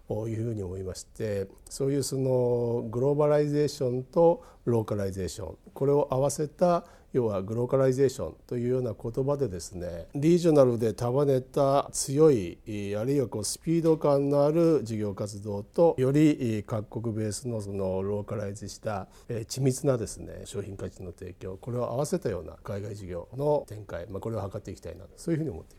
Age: 50-69